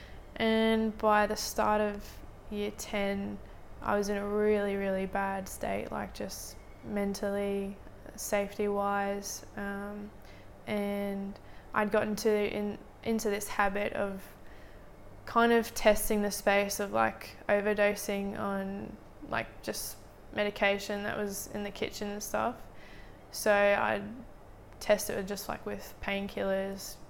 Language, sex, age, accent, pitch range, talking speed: English, female, 20-39, Australian, 195-205 Hz, 120 wpm